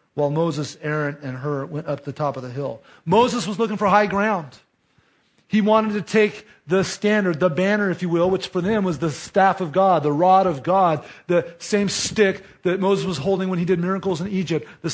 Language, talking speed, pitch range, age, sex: English, 220 wpm, 175-205 Hz, 40-59, male